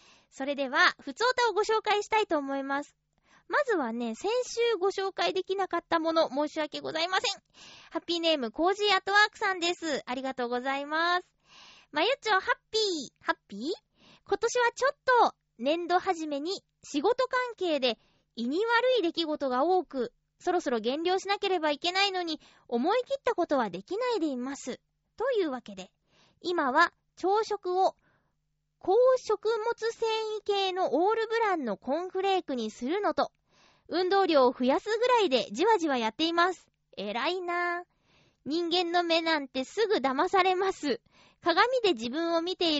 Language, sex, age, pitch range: Japanese, female, 20-39, 280-405 Hz